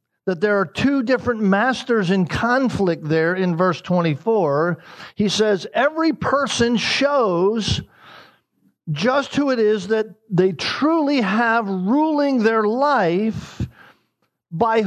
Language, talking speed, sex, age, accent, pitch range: English, 115 wpm, male, 50-69, American, 145-225 Hz